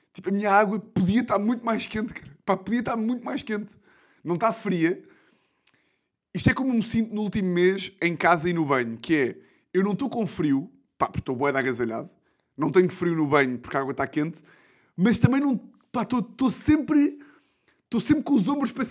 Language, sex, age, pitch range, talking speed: Portuguese, male, 20-39, 155-220 Hz, 215 wpm